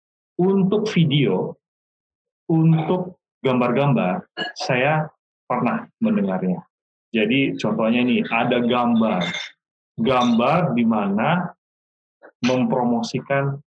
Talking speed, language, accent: 70 wpm, Indonesian, native